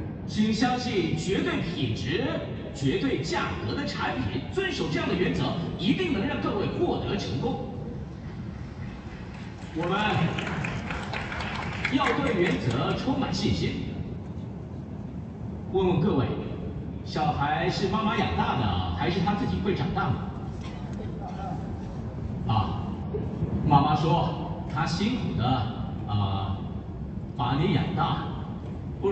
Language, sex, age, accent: Chinese, male, 40-59, native